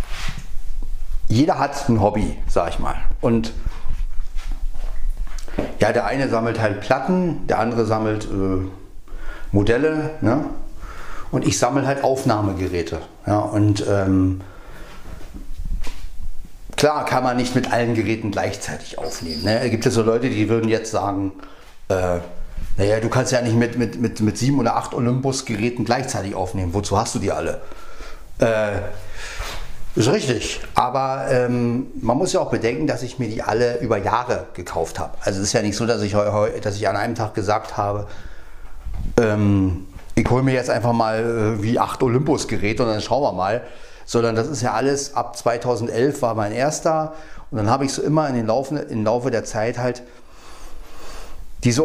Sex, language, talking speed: male, German, 170 wpm